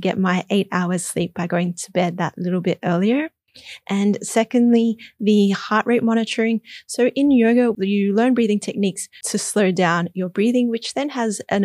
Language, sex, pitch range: English, female, 180-230 Hz